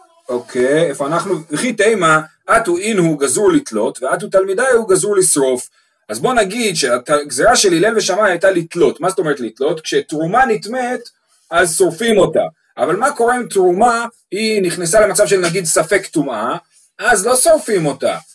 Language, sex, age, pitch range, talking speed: Hebrew, male, 30-49, 160-255 Hz, 155 wpm